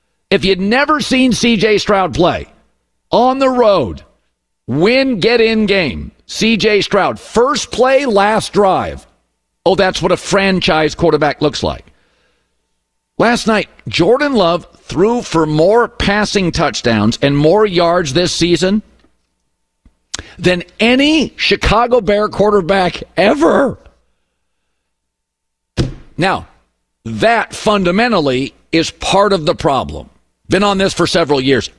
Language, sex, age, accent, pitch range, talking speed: English, male, 50-69, American, 140-205 Hz, 115 wpm